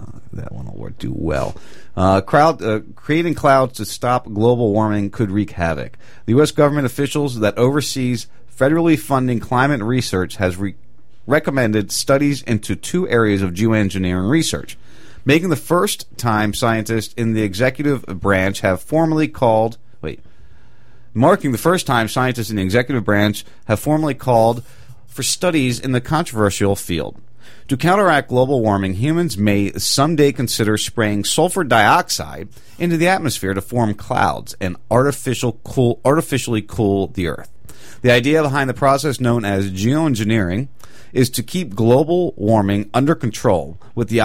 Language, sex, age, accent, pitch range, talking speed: English, male, 40-59, American, 105-135 Hz, 145 wpm